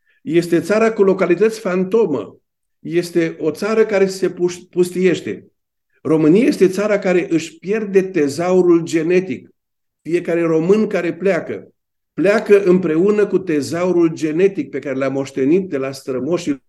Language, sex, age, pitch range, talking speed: Romanian, male, 50-69, 145-195 Hz, 125 wpm